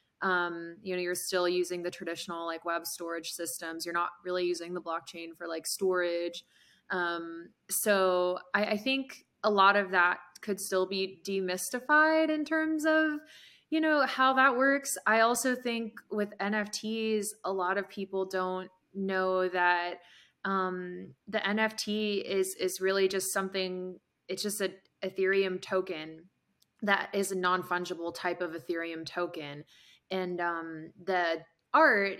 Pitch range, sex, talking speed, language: 170-195 Hz, female, 145 wpm, English